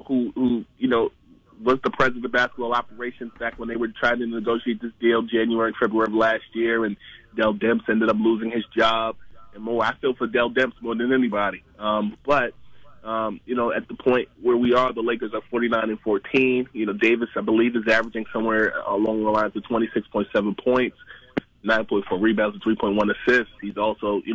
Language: English